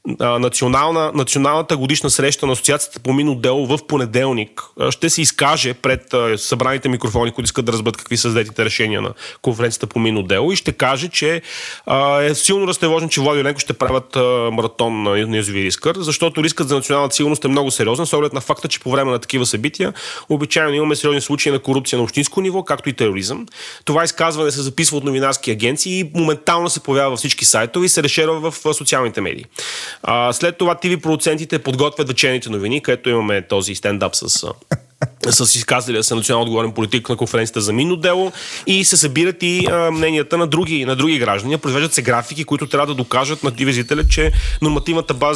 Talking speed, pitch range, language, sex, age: 185 wpm, 125-160 Hz, Bulgarian, male, 30-49